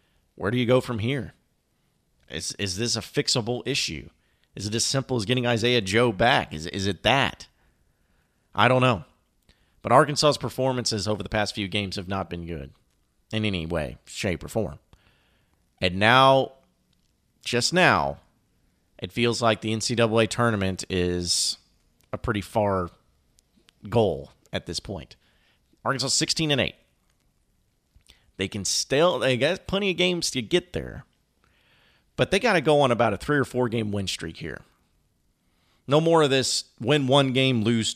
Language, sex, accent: English, male, American